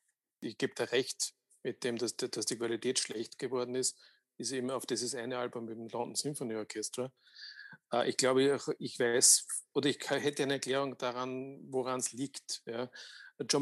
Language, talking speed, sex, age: German, 165 wpm, male, 50-69